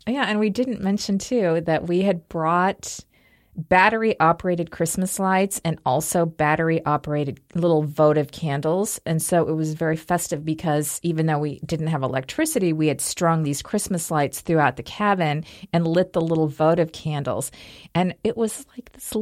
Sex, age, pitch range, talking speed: female, 40-59, 155-200 Hz, 160 wpm